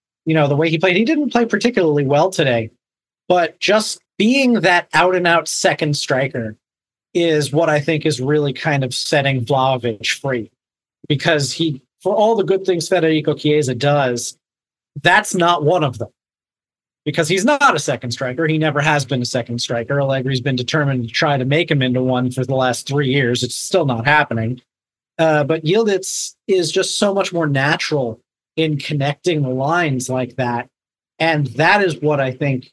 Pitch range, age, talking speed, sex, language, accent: 130-165 Hz, 30-49, 180 wpm, male, English, American